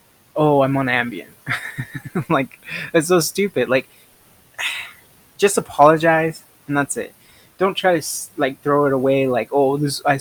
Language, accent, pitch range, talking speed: English, American, 130-155 Hz, 145 wpm